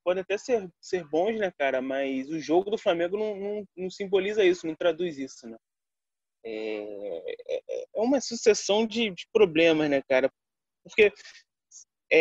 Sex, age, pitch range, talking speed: male, 20-39, 140-230 Hz, 155 wpm